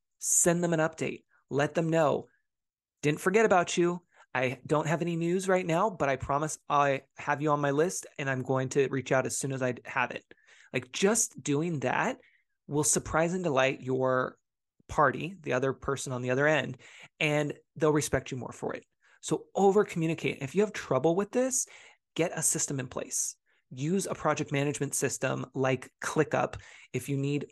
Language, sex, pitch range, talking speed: English, male, 130-160 Hz, 190 wpm